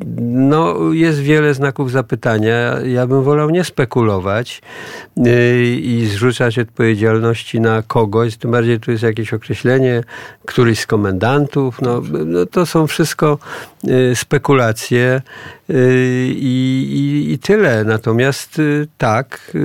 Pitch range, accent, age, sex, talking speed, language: 110-130 Hz, native, 50-69, male, 120 wpm, Polish